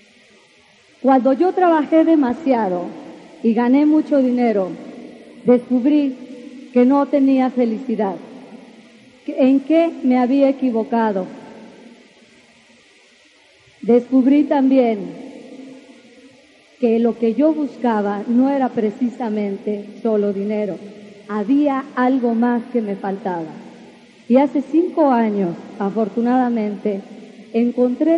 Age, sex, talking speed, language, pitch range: 40-59, female, 90 wpm, English, 230-275 Hz